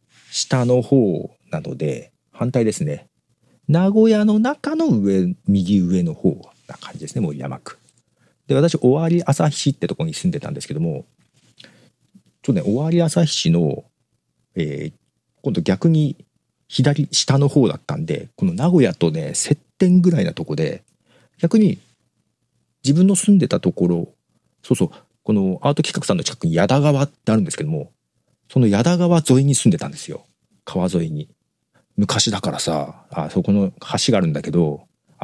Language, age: Japanese, 40-59